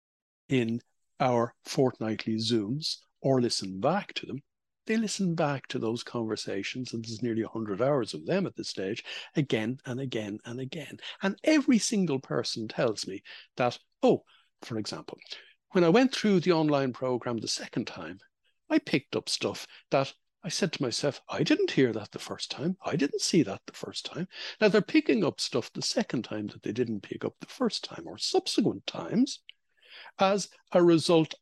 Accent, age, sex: Irish, 60-79, male